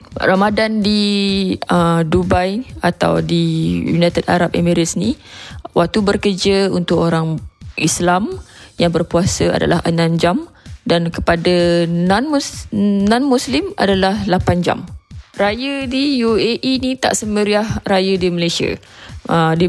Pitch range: 160-195 Hz